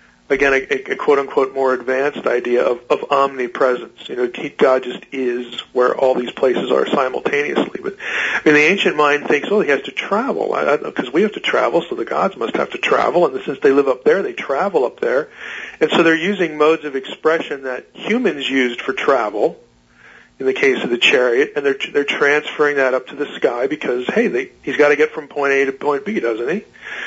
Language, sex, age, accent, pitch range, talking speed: English, male, 40-59, American, 130-170 Hz, 215 wpm